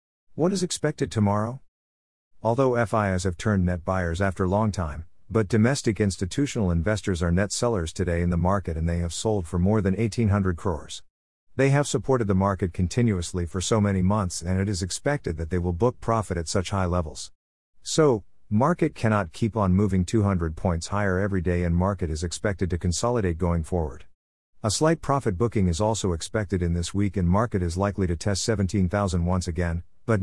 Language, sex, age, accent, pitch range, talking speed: English, male, 50-69, American, 85-110 Hz, 190 wpm